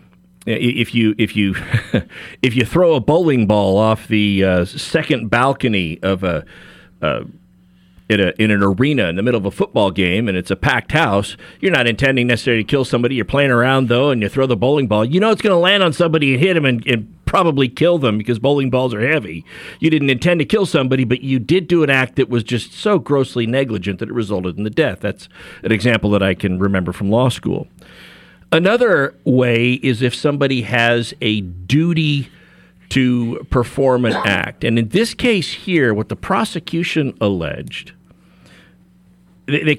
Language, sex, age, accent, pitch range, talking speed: English, male, 40-59, American, 105-140 Hz, 195 wpm